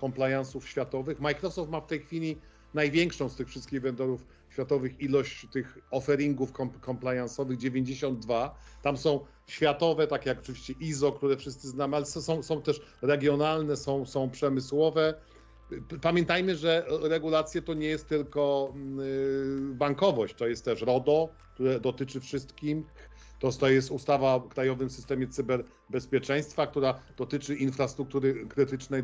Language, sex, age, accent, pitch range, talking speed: Polish, male, 50-69, native, 130-150 Hz, 130 wpm